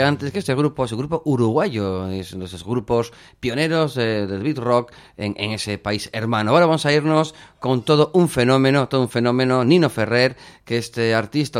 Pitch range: 105-135 Hz